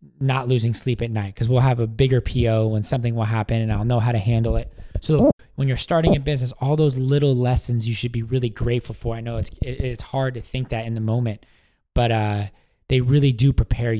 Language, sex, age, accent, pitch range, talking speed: English, male, 20-39, American, 110-130 Hz, 235 wpm